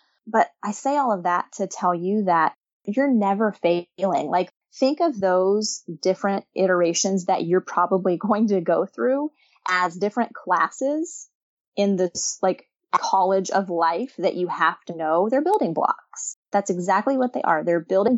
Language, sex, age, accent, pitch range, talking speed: English, female, 20-39, American, 175-235 Hz, 165 wpm